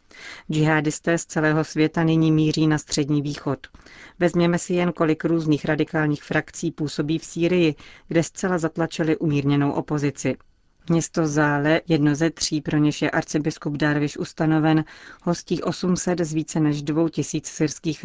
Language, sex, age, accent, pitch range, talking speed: Czech, female, 30-49, native, 150-165 Hz, 140 wpm